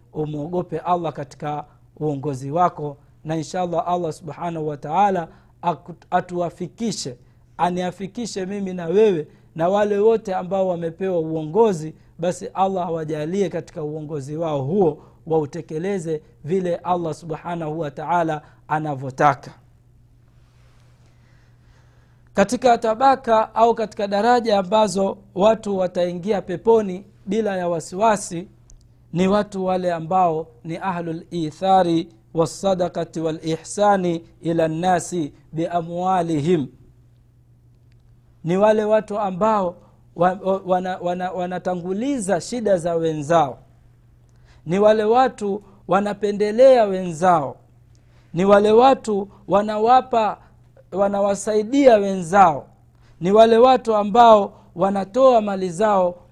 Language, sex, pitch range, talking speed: Swahili, male, 150-200 Hz, 95 wpm